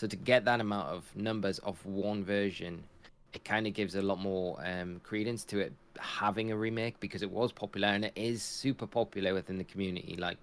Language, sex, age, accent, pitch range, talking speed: English, male, 20-39, British, 95-110 Hz, 215 wpm